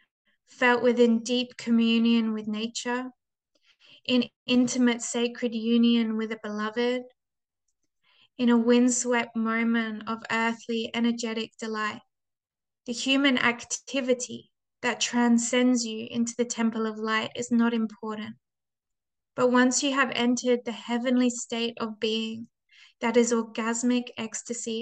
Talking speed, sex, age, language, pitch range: 120 wpm, female, 20-39, English, 225-245 Hz